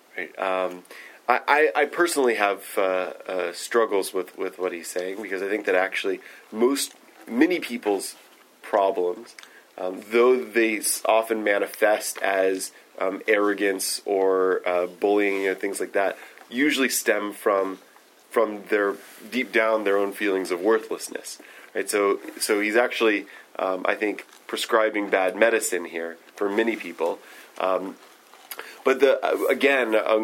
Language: English